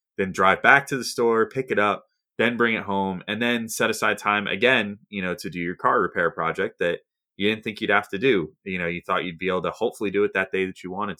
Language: English